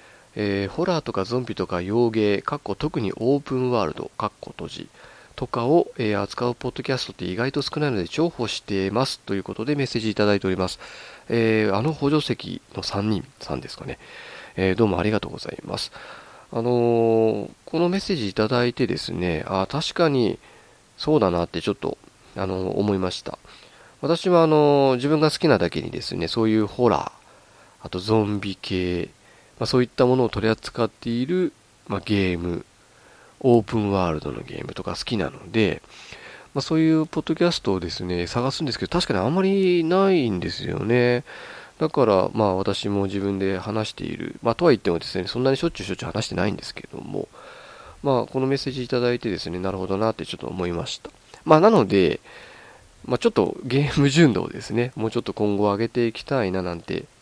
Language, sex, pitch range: Japanese, male, 95-135 Hz